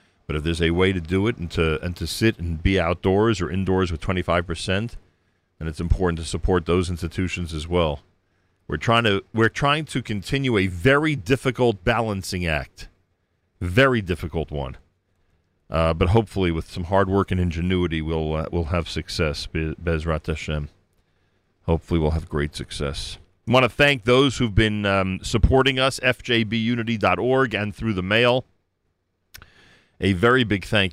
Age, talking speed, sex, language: 40-59, 165 wpm, male, English